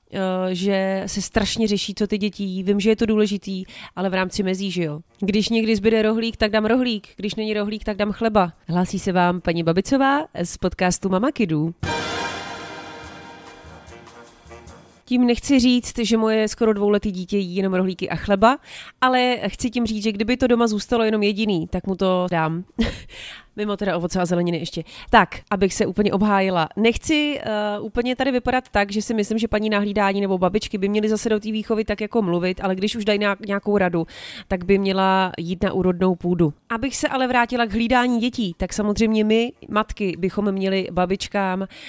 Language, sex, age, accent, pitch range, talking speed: Czech, female, 30-49, native, 185-220 Hz, 185 wpm